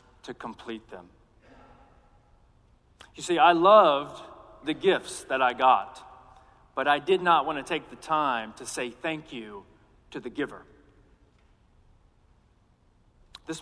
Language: English